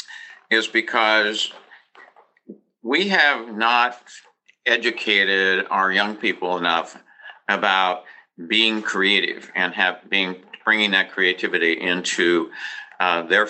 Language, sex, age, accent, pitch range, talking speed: English, male, 50-69, American, 95-130 Hz, 100 wpm